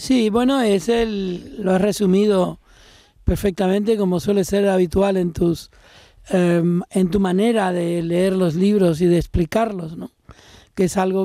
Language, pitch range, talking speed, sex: Spanish, 180-205 Hz, 155 wpm, male